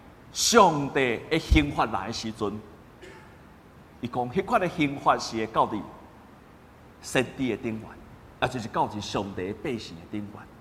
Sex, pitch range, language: male, 125-195 Hz, Chinese